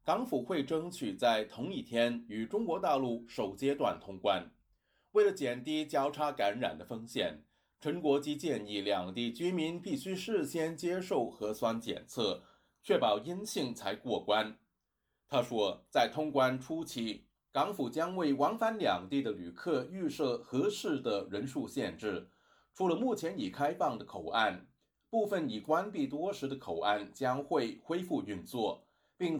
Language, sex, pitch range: Chinese, male, 120-175 Hz